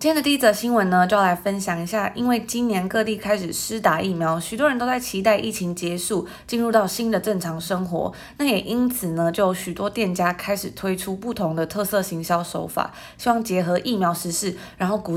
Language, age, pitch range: Chinese, 20-39, 175-220 Hz